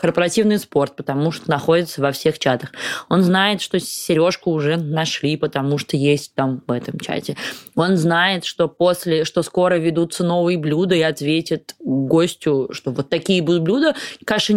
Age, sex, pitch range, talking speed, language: 20-39, female, 155-195 Hz, 160 wpm, Russian